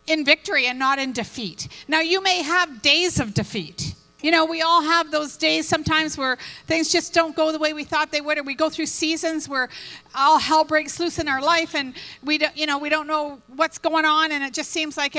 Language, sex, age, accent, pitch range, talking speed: English, female, 50-69, American, 265-320 Hz, 240 wpm